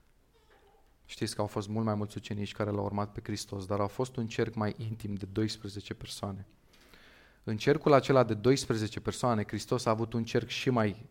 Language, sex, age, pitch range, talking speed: Romanian, male, 30-49, 105-115 Hz, 195 wpm